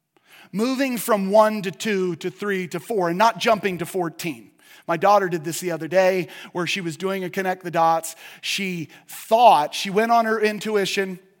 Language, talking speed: English, 190 wpm